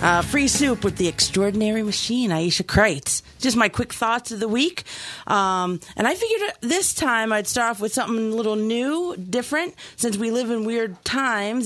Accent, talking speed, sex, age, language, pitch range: American, 190 wpm, female, 30-49, English, 175-230 Hz